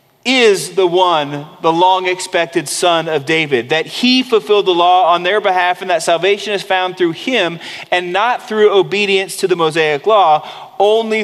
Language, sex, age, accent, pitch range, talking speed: English, male, 30-49, American, 140-185 Hz, 170 wpm